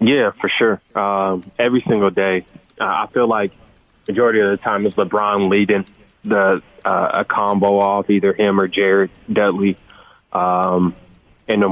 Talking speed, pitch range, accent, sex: 160 wpm, 95-105 Hz, American, male